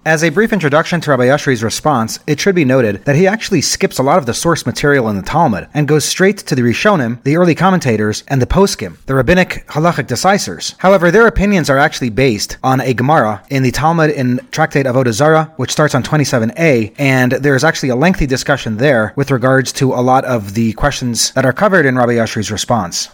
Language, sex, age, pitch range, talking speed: English, male, 30-49, 125-165 Hz, 220 wpm